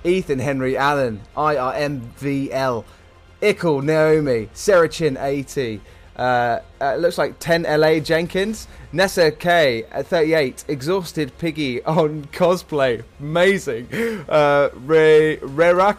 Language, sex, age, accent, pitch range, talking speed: English, male, 20-39, British, 140-185 Hz, 100 wpm